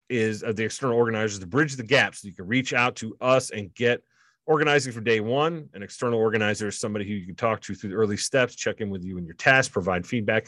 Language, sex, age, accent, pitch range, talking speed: English, male, 30-49, American, 105-125 Hz, 250 wpm